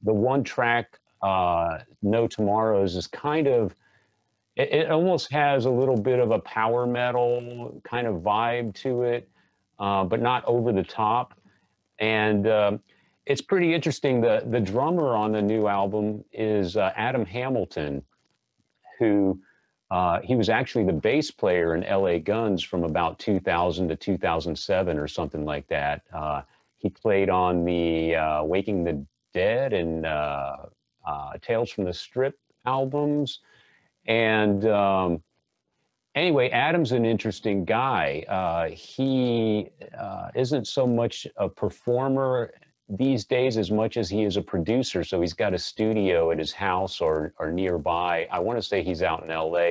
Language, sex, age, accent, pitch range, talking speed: English, male, 40-59, American, 95-120 Hz, 155 wpm